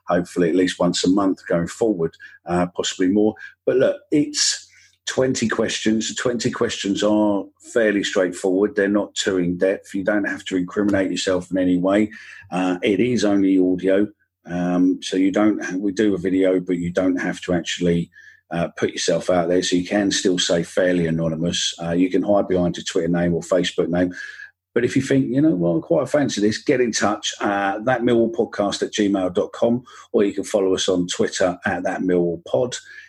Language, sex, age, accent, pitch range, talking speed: English, male, 50-69, British, 90-105 Hz, 190 wpm